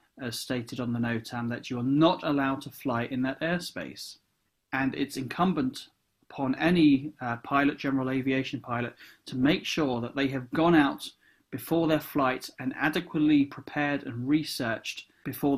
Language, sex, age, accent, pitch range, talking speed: English, male, 30-49, British, 130-155 Hz, 160 wpm